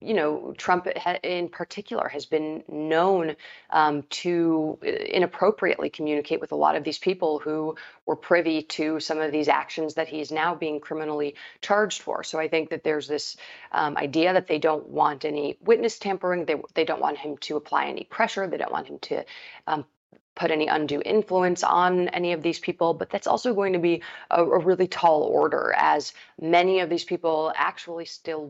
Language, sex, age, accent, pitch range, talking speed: English, female, 30-49, American, 150-175 Hz, 190 wpm